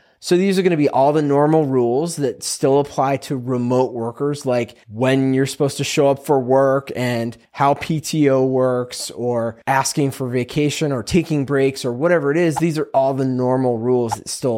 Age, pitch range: 20-39, 120-155 Hz